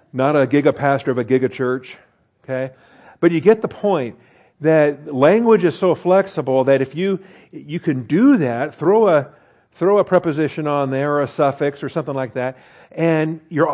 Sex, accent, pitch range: male, American, 120-150 Hz